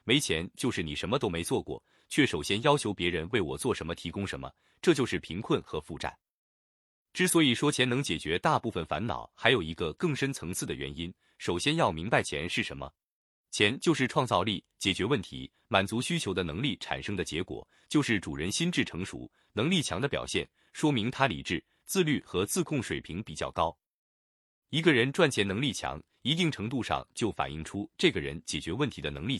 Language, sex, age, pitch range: Chinese, male, 20-39, 80-135 Hz